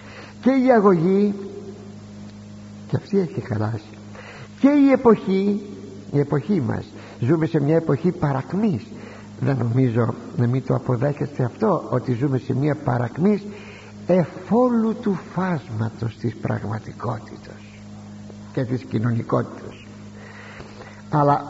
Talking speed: 110 wpm